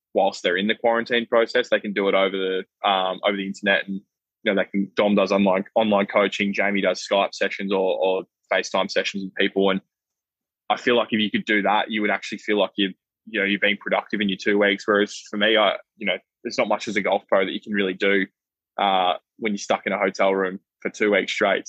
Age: 20-39